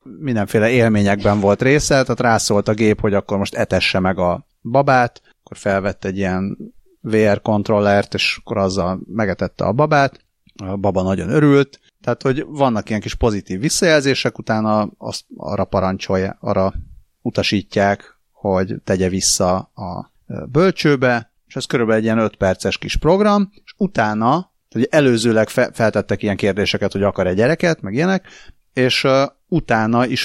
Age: 30-49